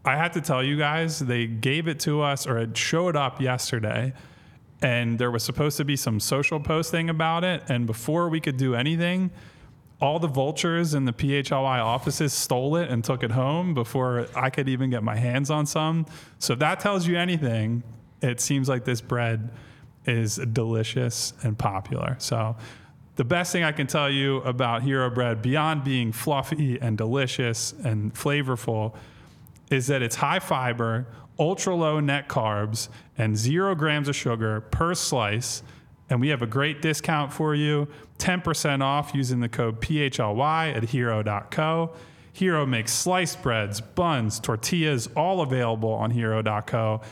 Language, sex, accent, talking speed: English, male, American, 165 wpm